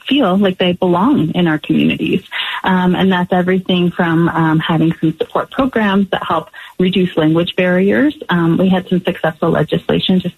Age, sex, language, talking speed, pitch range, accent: 30-49, female, English, 170 wpm, 160-190 Hz, American